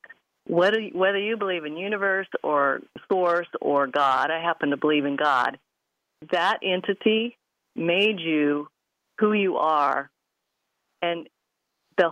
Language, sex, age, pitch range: English, female, 50-69, 155-190 Hz